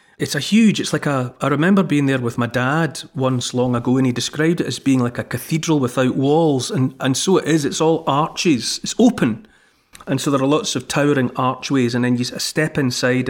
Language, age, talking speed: English, 40-59, 225 wpm